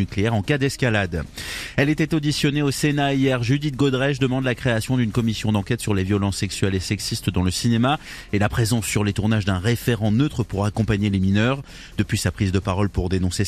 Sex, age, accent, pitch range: male, 30-49, French, 100-130 Hz